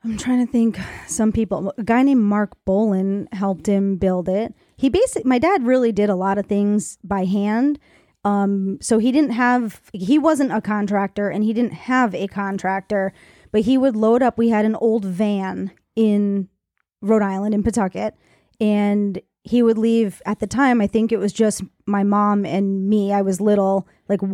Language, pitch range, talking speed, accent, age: English, 200-220 Hz, 190 wpm, American, 20-39